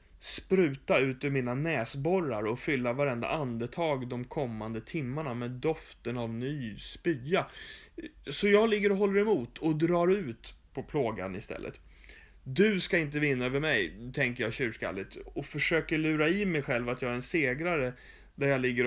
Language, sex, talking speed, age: English, male, 165 wpm, 30-49